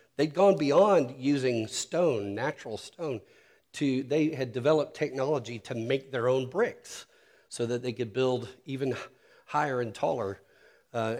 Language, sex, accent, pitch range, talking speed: English, male, American, 115-135 Hz, 145 wpm